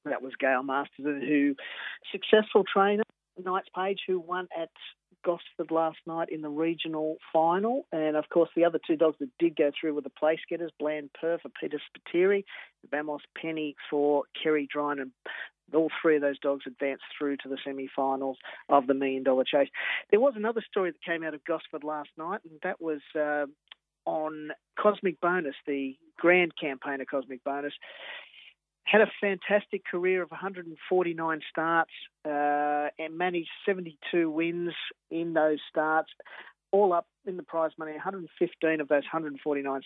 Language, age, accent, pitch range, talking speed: English, 40-59, Australian, 150-175 Hz, 165 wpm